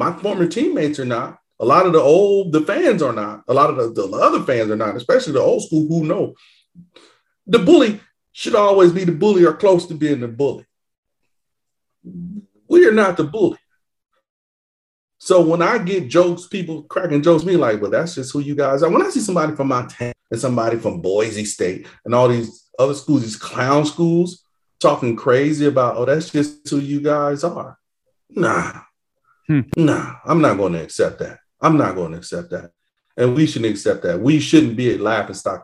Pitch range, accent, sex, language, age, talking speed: 120-175 Hz, American, male, English, 40-59, 200 wpm